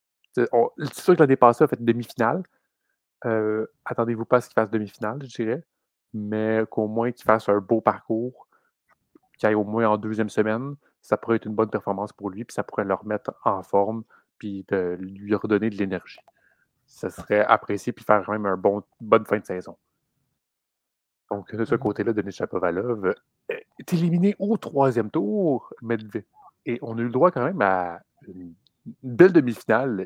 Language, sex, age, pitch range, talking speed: French, male, 30-49, 100-125 Hz, 185 wpm